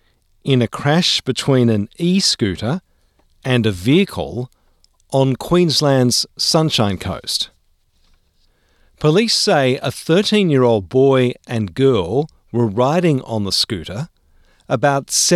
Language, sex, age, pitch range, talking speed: English, male, 50-69, 100-150 Hz, 100 wpm